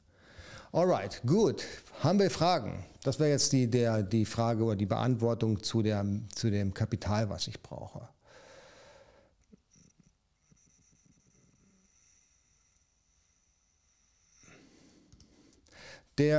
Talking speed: 90 wpm